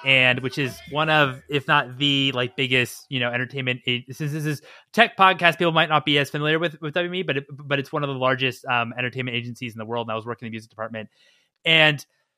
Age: 20-39